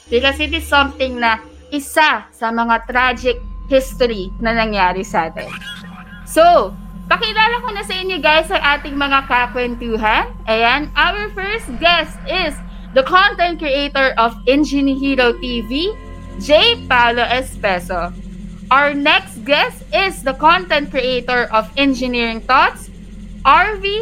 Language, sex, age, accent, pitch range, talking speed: Filipino, female, 20-39, native, 230-295 Hz, 125 wpm